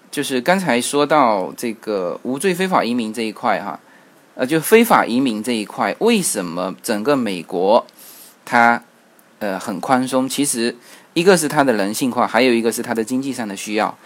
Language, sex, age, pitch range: Chinese, male, 20-39, 115-150 Hz